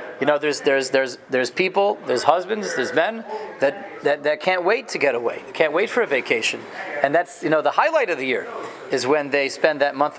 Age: 30-49